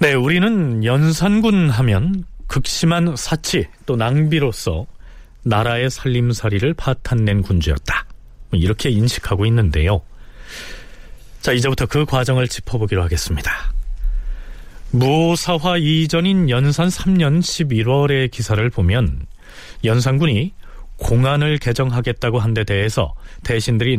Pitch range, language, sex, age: 100-145 Hz, Korean, male, 40-59